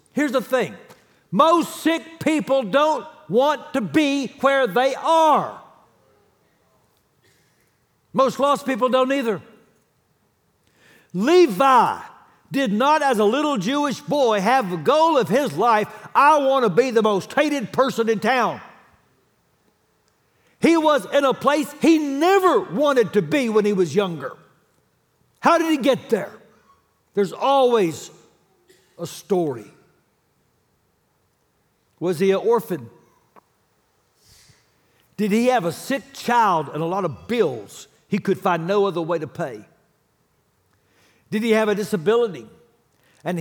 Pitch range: 175-275 Hz